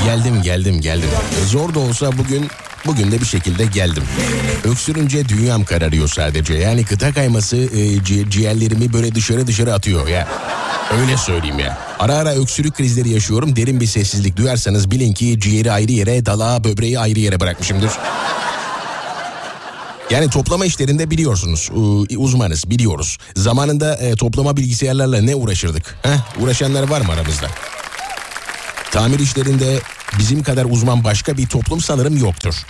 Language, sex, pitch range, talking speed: Turkish, male, 100-135 Hz, 140 wpm